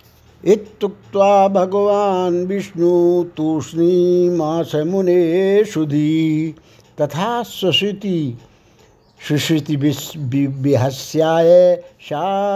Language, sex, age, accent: Hindi, male, 60-79, native